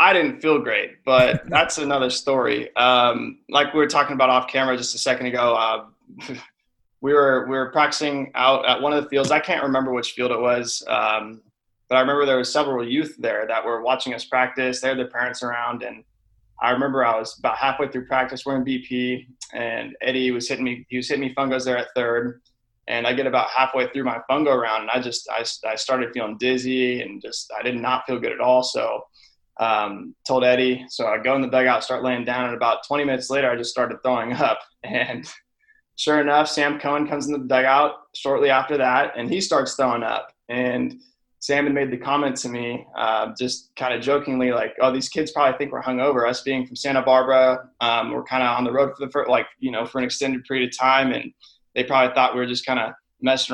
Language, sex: English, male